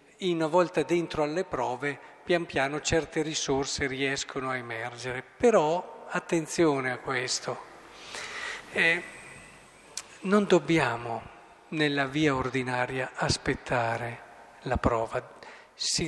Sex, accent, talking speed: male, native, 95 wpm